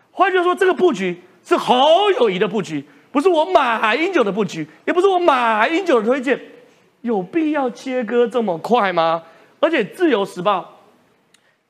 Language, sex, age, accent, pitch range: Chinese, male, 30-49, native, 180-260 Hz